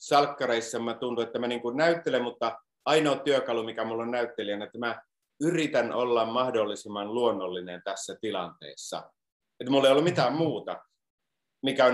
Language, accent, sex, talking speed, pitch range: Finnish, native, male, 145 wpm, 115-150 Hz